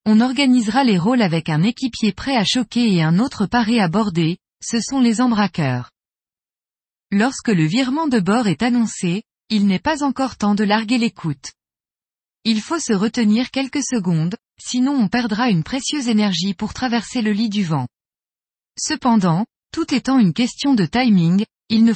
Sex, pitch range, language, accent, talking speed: female, 185-250 Hz, French, French, 170 wpm